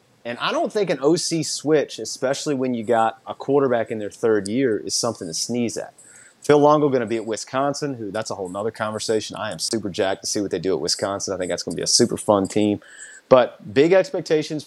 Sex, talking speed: male, 240 wpm